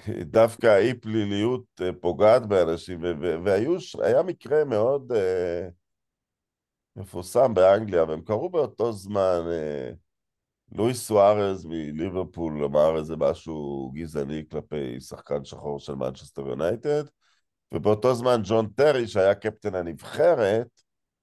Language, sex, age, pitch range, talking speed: Hebrew, male, 50-69, 80-110 Hz, 95 wpm